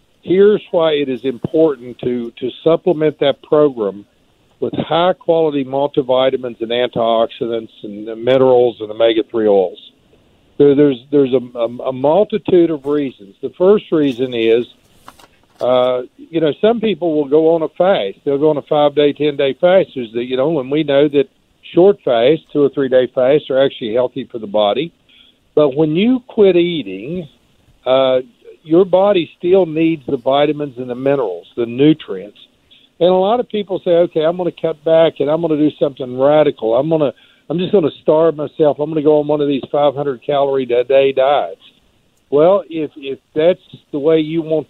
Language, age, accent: English, 60-79, American